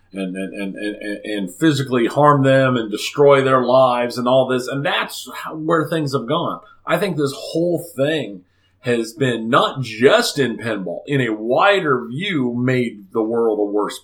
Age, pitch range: 40-59, 120-160 Hz